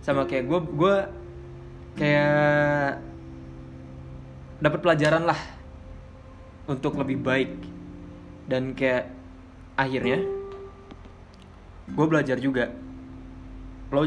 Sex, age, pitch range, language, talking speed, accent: male, 20-39, 90-135 Hz, Indonesian, 75 wpm, native